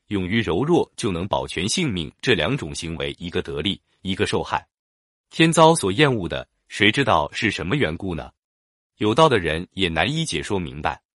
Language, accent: Chinese, native